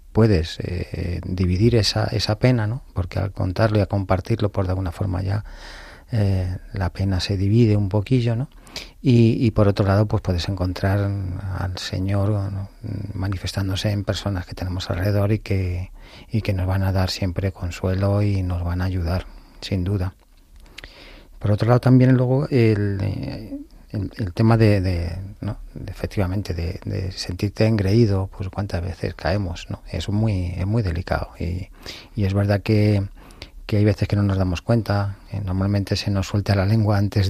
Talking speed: 175 wpm